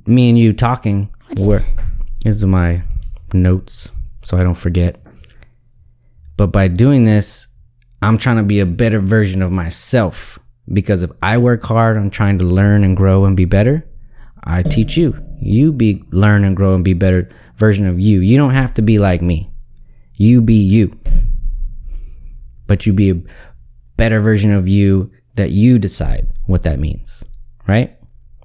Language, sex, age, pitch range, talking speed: English, male, 20-39, 95-120 Hz, 160 wpm